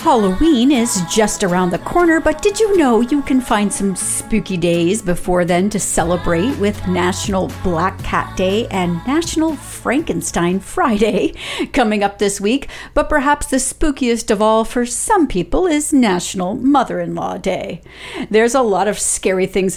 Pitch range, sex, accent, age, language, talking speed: 190-290 Hz, female, American, 40-59, English, 160 wpm